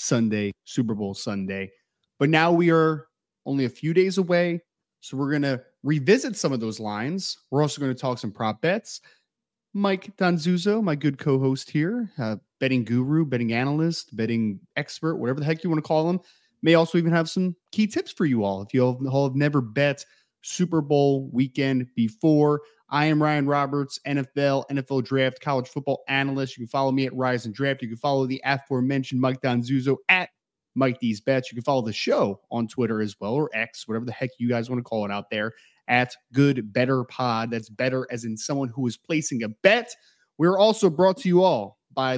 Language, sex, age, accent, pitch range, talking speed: English, male, 30-49, American, 120-160 Hz, 205 wpm